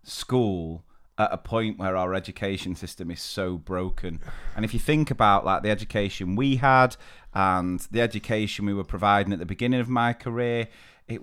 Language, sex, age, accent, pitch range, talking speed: English, male, 30-49, British, 105-135 Hz, 180 wpm